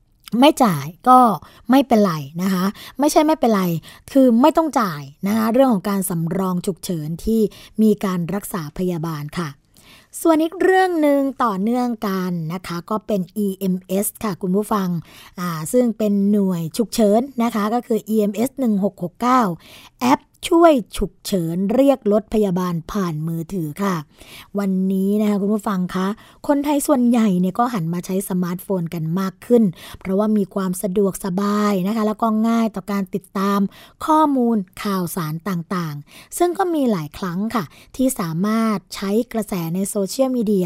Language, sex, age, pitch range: Thai, female, 20-39, 185-235 Hz